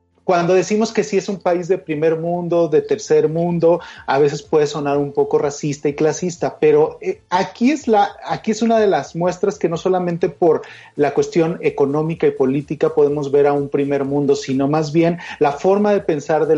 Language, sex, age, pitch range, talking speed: Spanish, male, 40-59, 145-180 Hz, 200 wpm